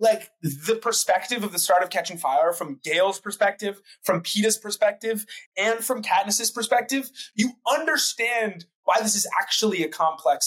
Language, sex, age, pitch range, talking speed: English, male, 20-39, 160-225 Hz, 155 wpm